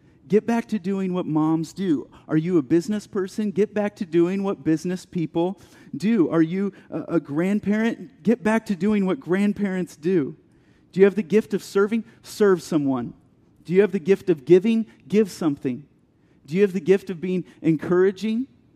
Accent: American